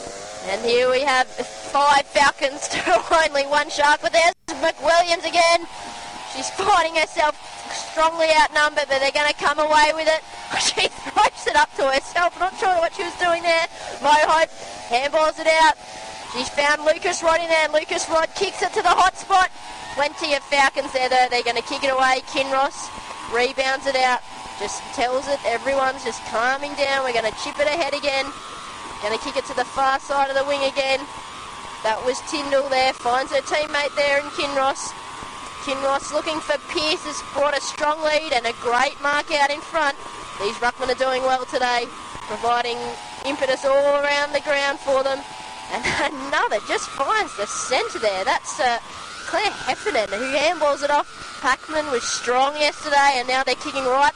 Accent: Australian